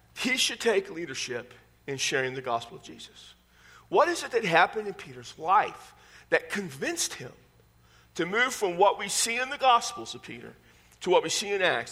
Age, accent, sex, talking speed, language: 40-59, American, male, 190 wpm, English